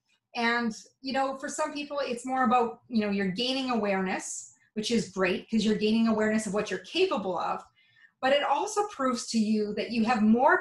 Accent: American